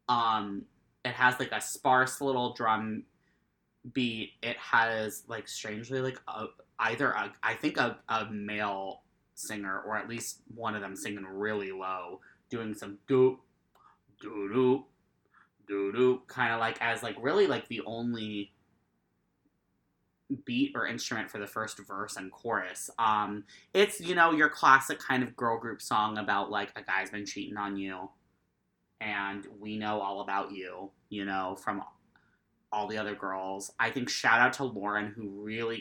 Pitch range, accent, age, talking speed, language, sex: 100-115 Hz, American, 20-39, 160 wpm, English, male